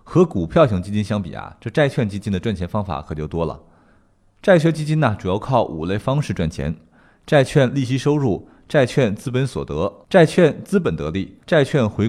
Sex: male